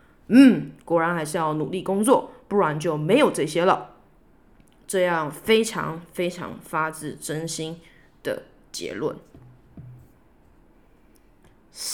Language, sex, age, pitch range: Chinese, female, 20-39, 160-205 Hz